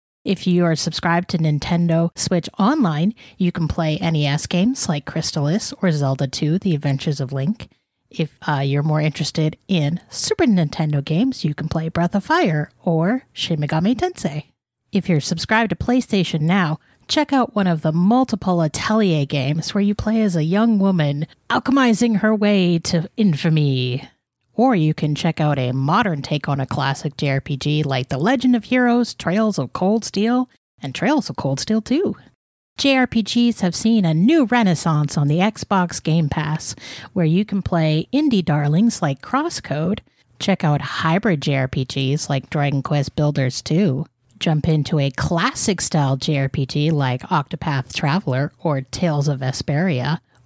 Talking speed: 160 wpm